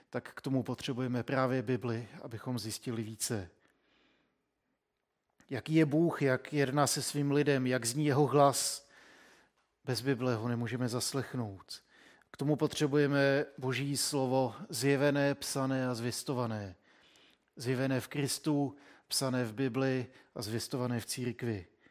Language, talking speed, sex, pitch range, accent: Czech, 125 wpm, male, 125-140 Hz, native